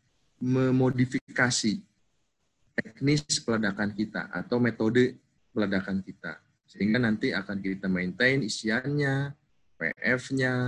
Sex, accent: male, native